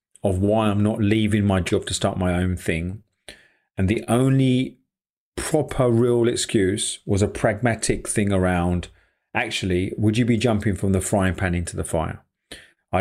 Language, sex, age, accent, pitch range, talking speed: English, male, 30-49, British, 95-115 Hz, 165 wpm